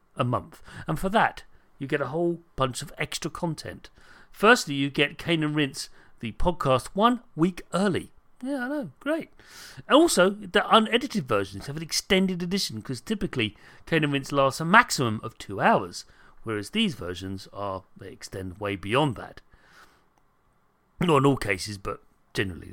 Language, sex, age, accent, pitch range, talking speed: English, male, 40-59, British, 120-190 Hz, 165 wpm